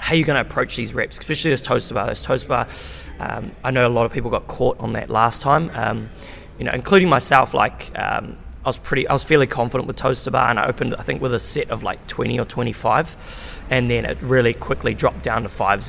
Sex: male